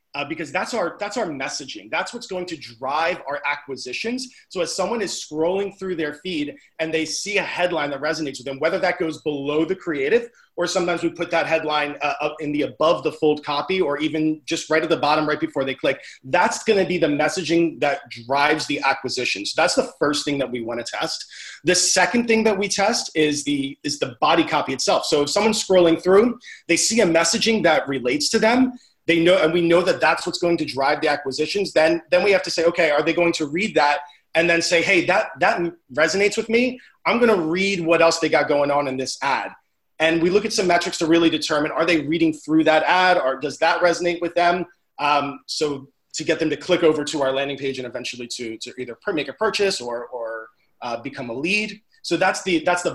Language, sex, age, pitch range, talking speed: English, male, 30-49, 145-180 Hz, 235 wpm